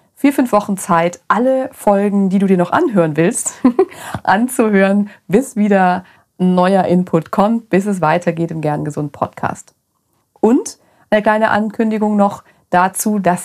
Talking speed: 135 wpm